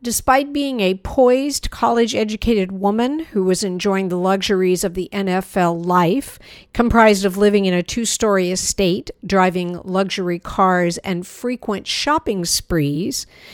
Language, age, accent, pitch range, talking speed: English, 50-69, American, 180-225 Hz, 135 wpm